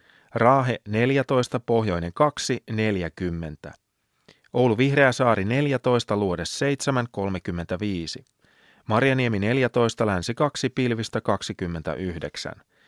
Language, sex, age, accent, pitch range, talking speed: Finnish, male, 30-49, native, 105-130 Hz, 80 wpm